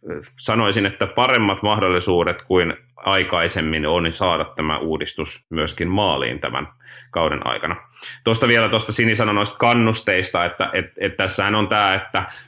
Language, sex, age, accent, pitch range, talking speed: Finnish, male, 30-49, native, 85-100 Hz, 130 wpm